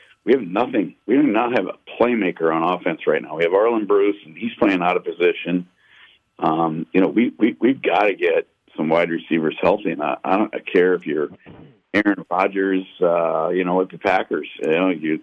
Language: English